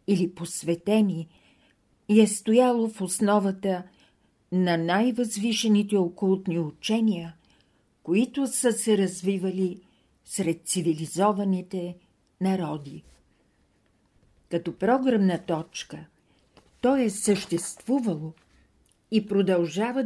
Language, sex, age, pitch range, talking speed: Bulgarian, female, 50-69, 170-215 Hz, 80 wpm